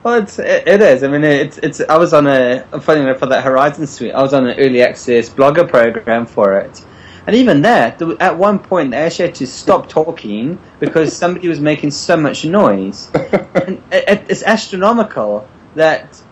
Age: 20-39